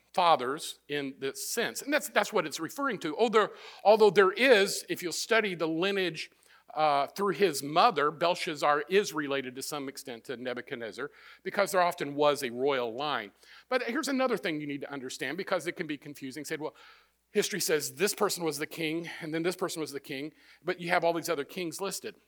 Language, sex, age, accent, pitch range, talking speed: English, male, 50-69, American, 145-200 Hz, 205 wpm